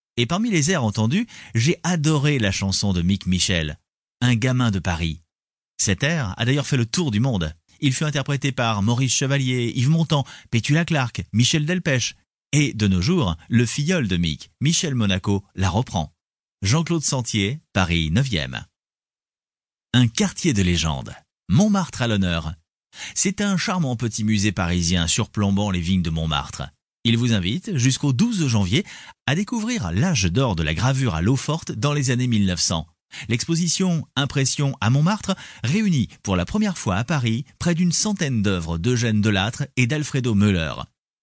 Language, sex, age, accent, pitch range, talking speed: French, male, 30-49, French, 95-150 Hz, 160 wpm